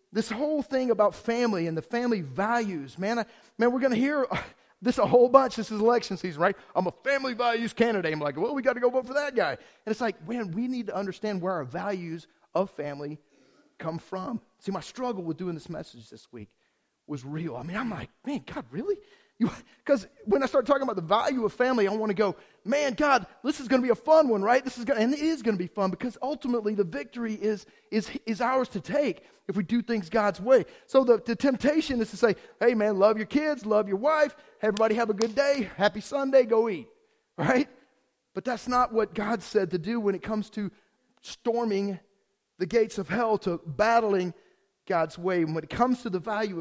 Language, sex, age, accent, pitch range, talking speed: English, male, 30-49, American, 195-250 Hz, 230 wpm